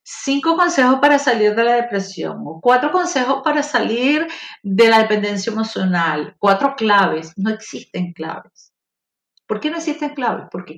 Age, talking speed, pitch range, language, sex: 50-69, 150 wpm, 190-255 Hz, Spanish, female